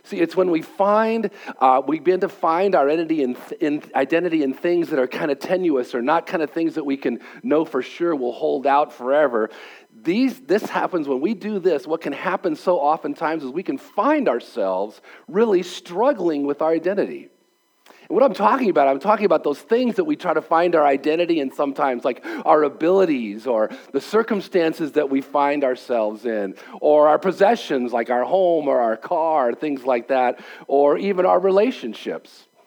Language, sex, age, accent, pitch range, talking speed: English, male, 40-59, American, 135-185 Hz, 190 wpm